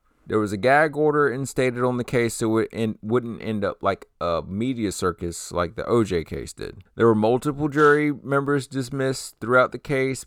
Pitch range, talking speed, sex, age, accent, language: 105-135 Hz, 185 wpm, male, 30-49, American, English